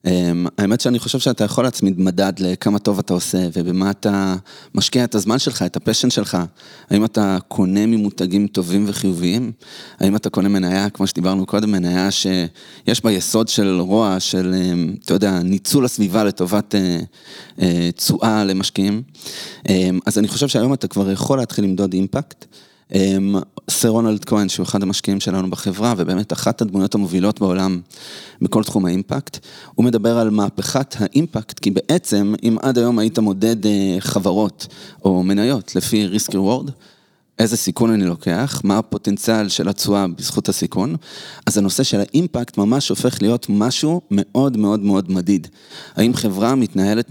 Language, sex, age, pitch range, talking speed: Hebrew, male, 20-39, 95-110 Hz, 150 wpm